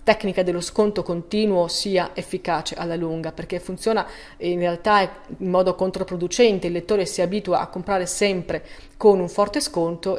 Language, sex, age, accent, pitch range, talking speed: Italian, female, 30-49, native, 180-220 Hz, 155 wpm